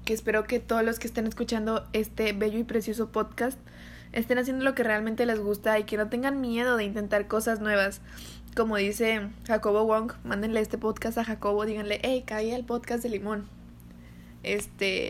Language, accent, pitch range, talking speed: Spanish, Mexican, 210-255 Hz, 185 wpm